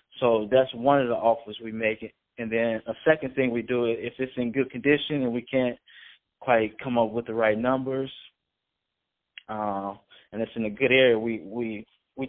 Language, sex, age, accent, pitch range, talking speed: English, male, 20-39, American, 110-125 Hz, 195 wpm